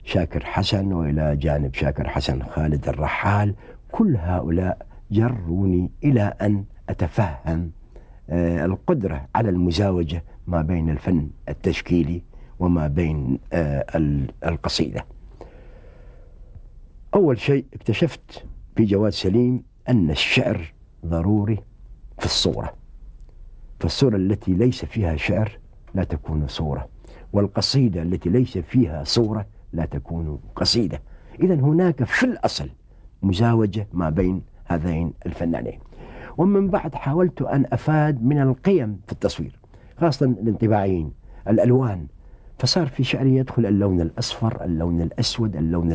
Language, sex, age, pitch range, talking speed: Arabic, male, 60-79, 85-120 Hz, 105 wpm